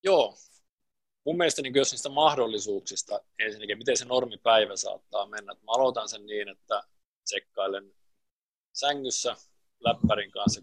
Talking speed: 125 wpm